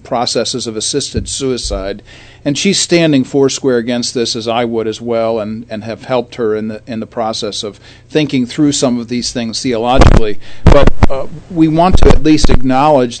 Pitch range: 115-140 Hz